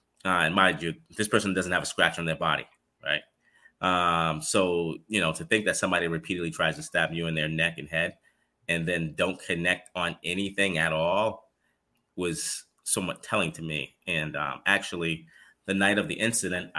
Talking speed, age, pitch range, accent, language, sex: 190 wpm, 30-49, 80-95 Hz, American, English, male